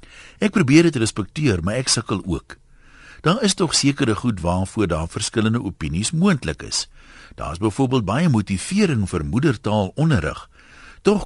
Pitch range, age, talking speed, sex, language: 95-135 Hz, 60-79, 160 wpm, male, Dutch